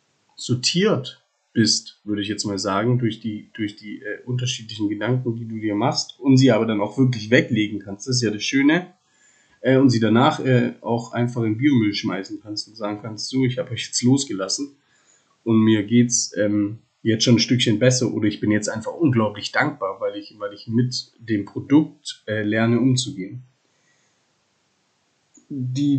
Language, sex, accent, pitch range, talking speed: German, male, German, 110-140 Hz, 175 wpm